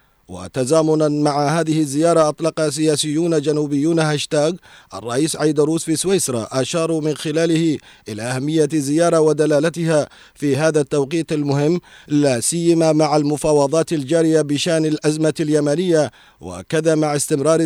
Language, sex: Arabic, male